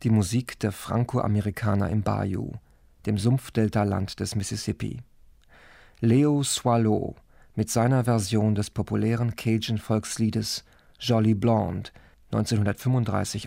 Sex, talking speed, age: male, 100 wpm, 40-59